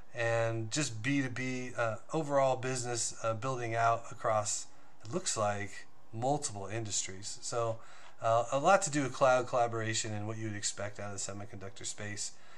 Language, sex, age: English, male, 30-49